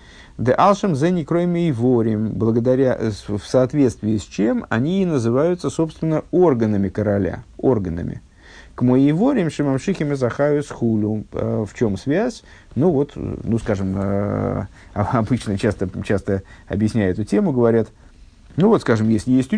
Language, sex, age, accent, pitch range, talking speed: Russian, male, 50-69, native, 105-140 Hz, 100 wpm